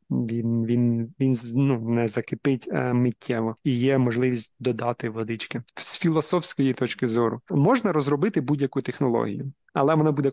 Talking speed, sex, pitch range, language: 135 wpm, male, 125-155 Hz, Ukrainian